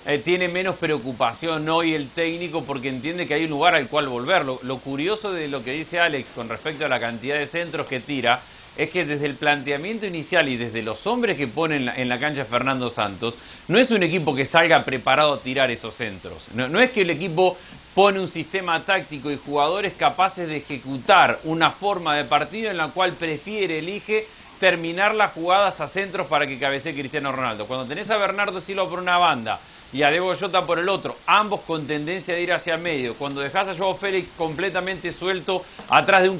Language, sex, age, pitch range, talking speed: Spanish, male, 40-59, 145-185 Hz, 210 wpm